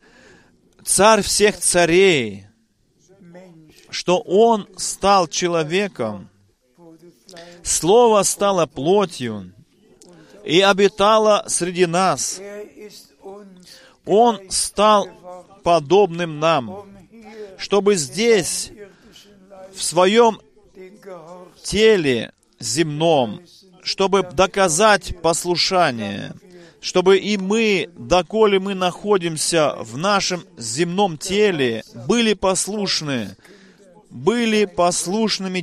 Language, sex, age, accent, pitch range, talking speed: Russian, male, 40-59, native, 170-200 Hz, 70 wpm